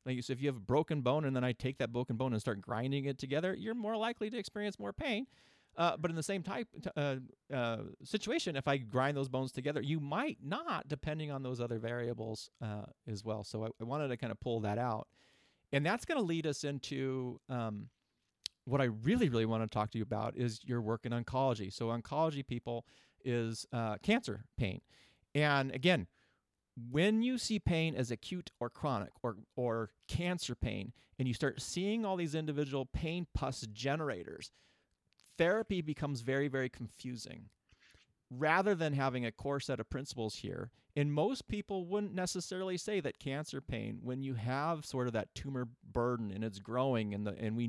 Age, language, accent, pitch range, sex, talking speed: 40-59, English, American, 115-155 Hz, male, 195 wpm